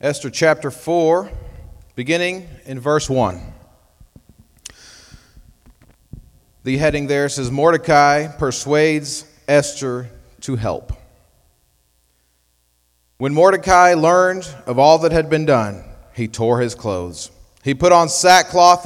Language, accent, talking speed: English, American, 105 wpm